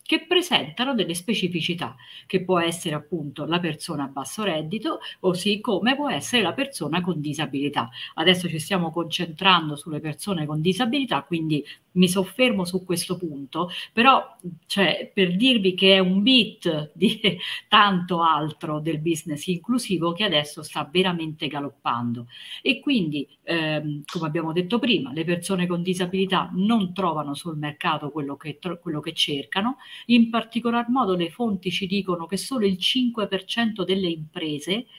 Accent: native